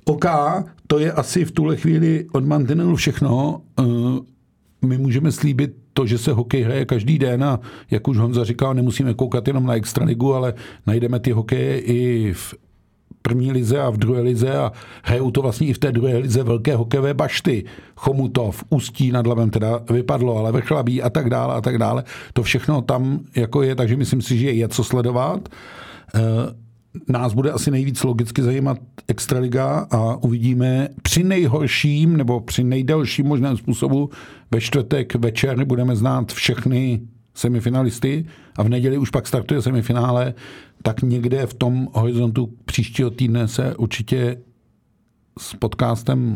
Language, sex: Czech, male